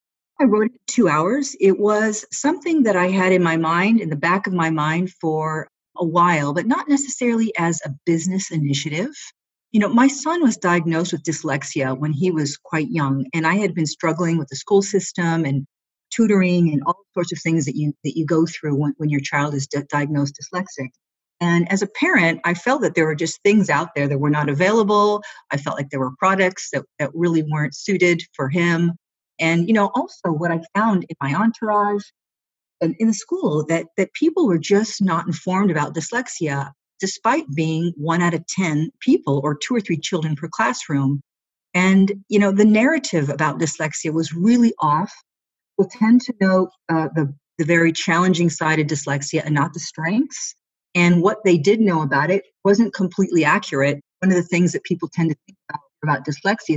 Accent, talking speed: American, 200 wpm